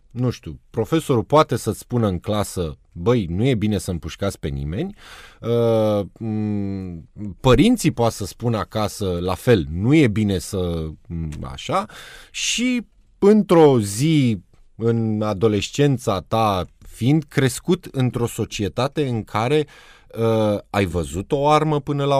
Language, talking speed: Romanian, 125 wpm